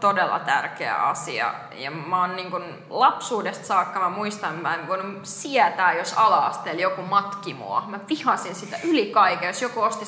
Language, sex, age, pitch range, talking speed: Finnish, female, 20-39, 175-215 Hz, 160 wpm